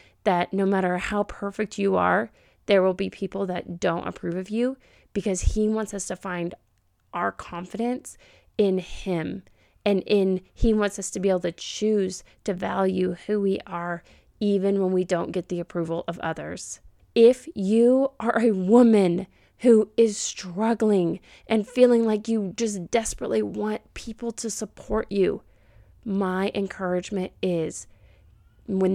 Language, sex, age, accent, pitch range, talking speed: English, female, 30-49, American, 175-215 Hz, 150 wpm